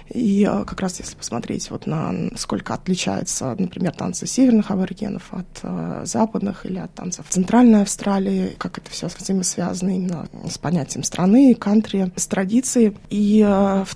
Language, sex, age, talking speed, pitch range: Russian, female, 20-39, 150 wpm, 185-220 Hz